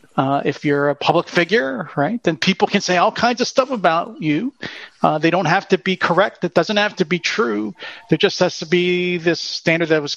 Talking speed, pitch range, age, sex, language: 230 wpm, 140-180 Hz, 40-59, male, English